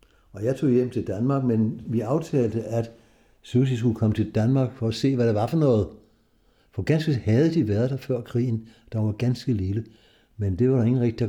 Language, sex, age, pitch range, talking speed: Danish, male, 60-79, 100-125 Hz, 230 wpm